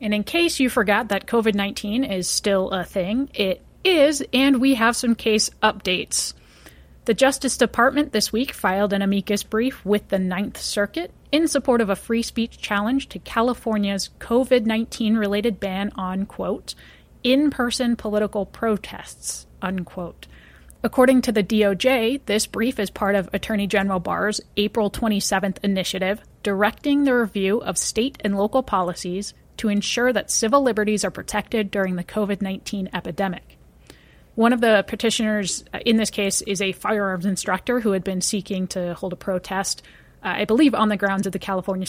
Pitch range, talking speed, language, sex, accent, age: 190-230 Hz, 160 wpm, English, female, American, 30-49